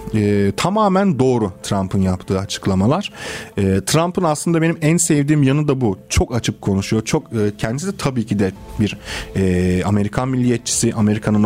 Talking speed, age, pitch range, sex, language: 155 wpm, 40-59, 105-140 Hz, male, Turkish